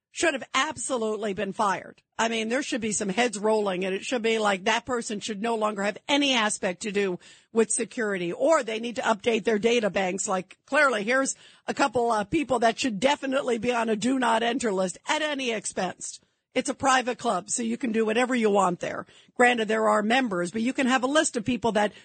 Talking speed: 220 wpm